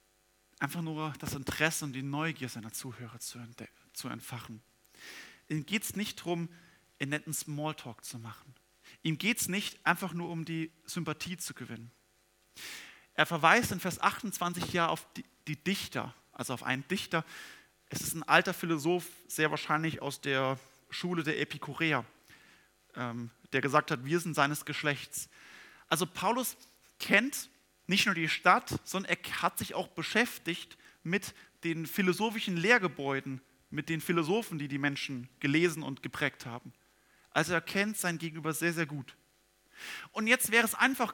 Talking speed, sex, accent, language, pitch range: 150 wpm, male, German, German, 135-180 Hz